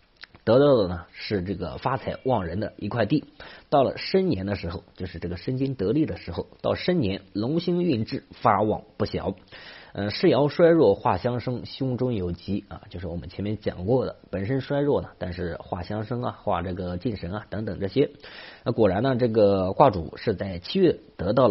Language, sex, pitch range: Chinese, male, 90-130 Hz